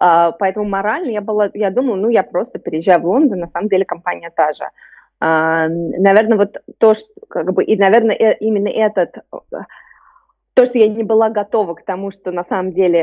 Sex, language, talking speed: female, Russian, 190 wpm